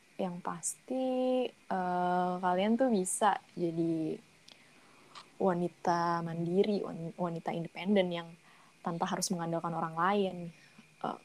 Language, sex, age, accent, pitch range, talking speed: Indonesian, female, 20-39, native, 175-200 Hz, 95 wpm